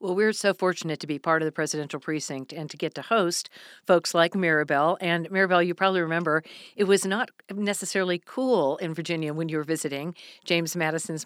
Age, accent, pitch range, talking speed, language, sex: 50-69, American, 150-180 Hz, 195 wpm, English, female